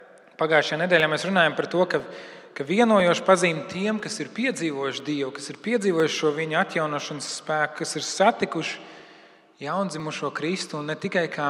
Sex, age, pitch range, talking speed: male, 30-49, 150-190 Hz, 160 wpm